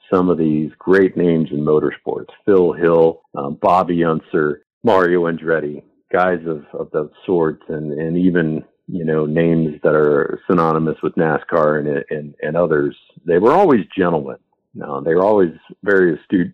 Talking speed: 160 wpm